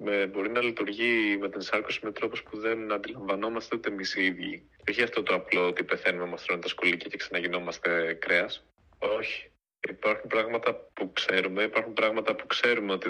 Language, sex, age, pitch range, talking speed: Greek, male, 30-49, 95-110 Hz, 180 wpm